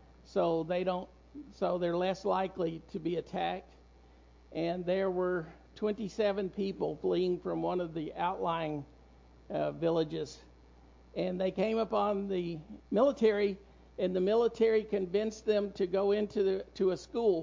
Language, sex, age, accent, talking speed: English, male, 50-69, American, 140 wpm